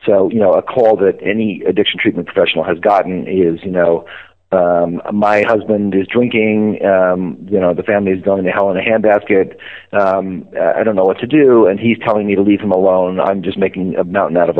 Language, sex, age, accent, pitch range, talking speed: English, male, 40-59, American, 95-110 Hz, 220 wpm